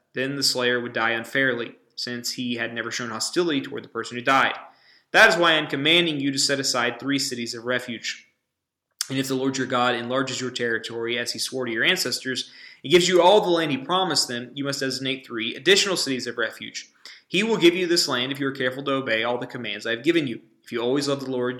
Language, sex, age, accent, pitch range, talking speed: English, male, 20-39, American, 125-155 Hz, 245 wpm